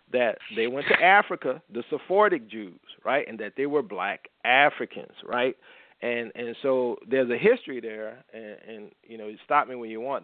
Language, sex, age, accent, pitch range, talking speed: English, male, 40-59, American, 120-170 Hz, 195 wpm